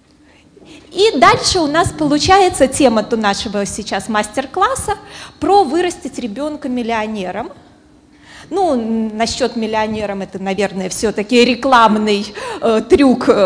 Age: 20-39